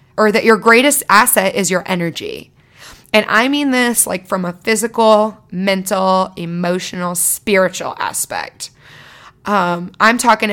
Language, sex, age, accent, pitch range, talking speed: English, female, 20-39, American, 185-225 Hz, 130 wpm